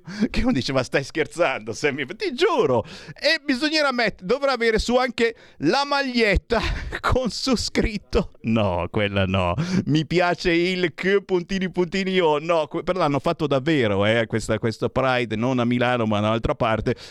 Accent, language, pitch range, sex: native, Italian, 120-175 Hz, male